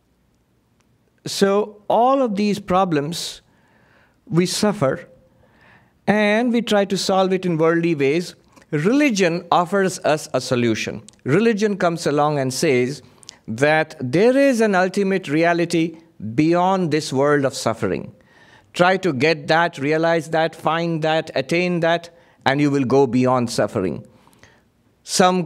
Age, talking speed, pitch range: 50-69, 125 wpm, 140-185 Hz